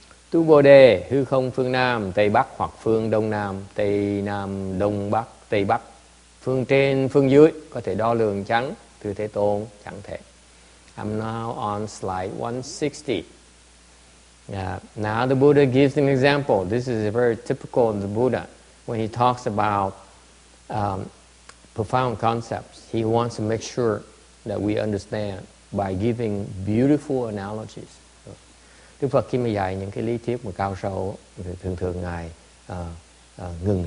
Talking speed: 150 wpm